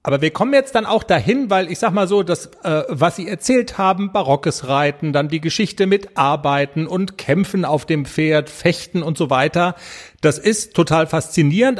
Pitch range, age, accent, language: 145-190 Hz, 40-59, German, German